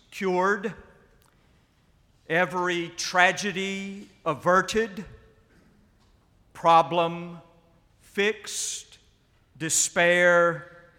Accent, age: American, 50-69